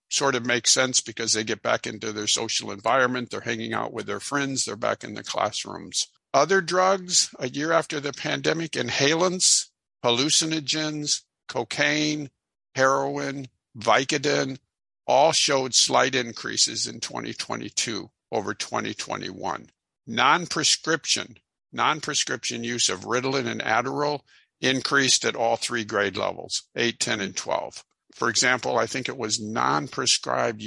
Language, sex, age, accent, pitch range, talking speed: English, male, 50-69, American, 115-140 Hz, 130 wpm